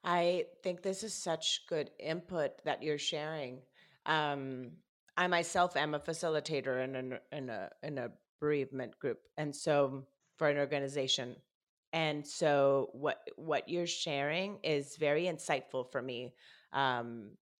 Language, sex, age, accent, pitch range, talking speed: English, female, 30-49, American, 130-160 Hz, 140 wpm